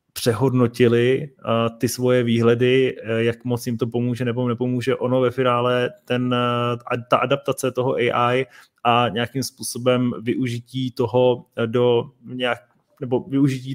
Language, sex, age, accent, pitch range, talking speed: Czech, male, 20-39, native, 120-130 Hz, 120 wpm